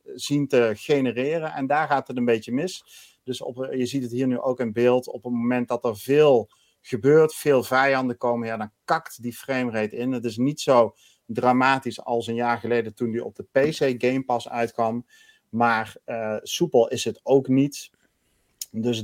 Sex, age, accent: male, 40-59, Dutch